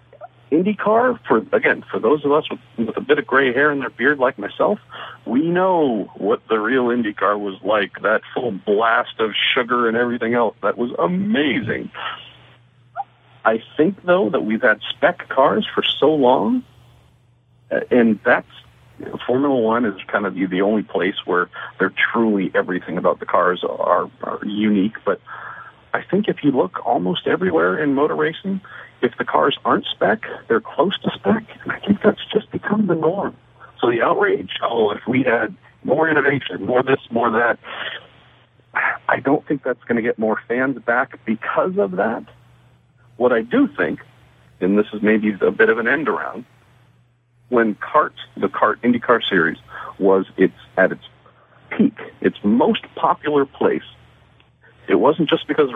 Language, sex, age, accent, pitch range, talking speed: English, male, 50-69, American, 110-150 Hz, 165 wpm